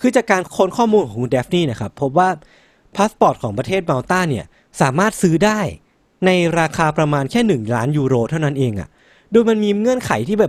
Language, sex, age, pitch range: Thai, male, 20-39, 130-190 Hz